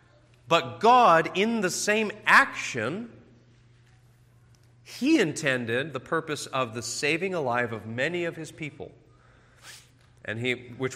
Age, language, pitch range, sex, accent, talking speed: 30-49, English, 115-145 Hz, male, American, 110 wpm